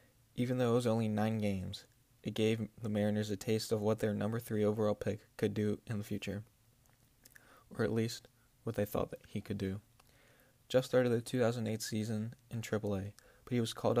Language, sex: English, male